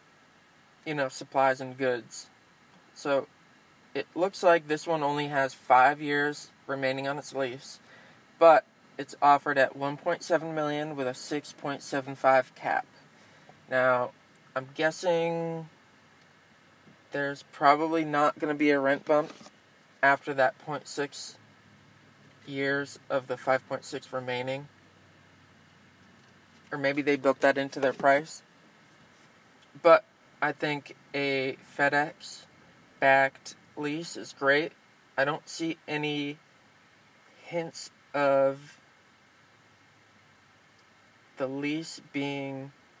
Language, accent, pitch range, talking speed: English, American, 135-150 Hz, 115 wpm